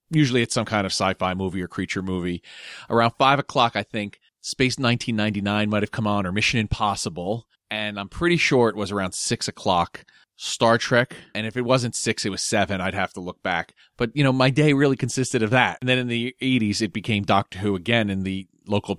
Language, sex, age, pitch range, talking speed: English, male, 30-49, 95-120 Hz, 220 wpm